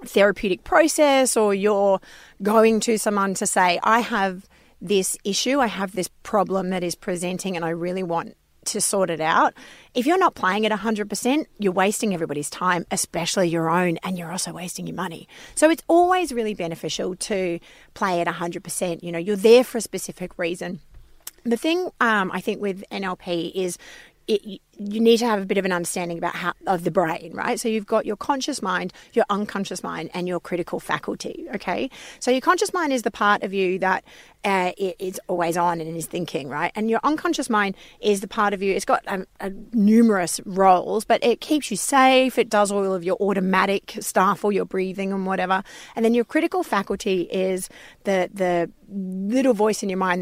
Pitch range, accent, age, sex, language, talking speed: 180-225 Hz, Australian, 30-49, female, English, 200 wpm